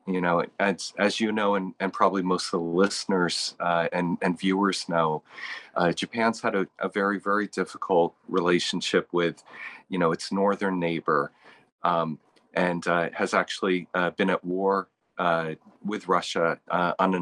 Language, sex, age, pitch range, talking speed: English, male, 40-59, 85-100 Hz, 165 wpm